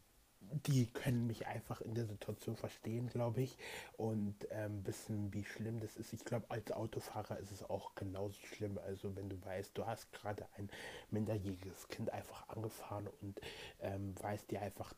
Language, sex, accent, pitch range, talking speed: German, male, German, 105-125 Hz, 170 wpm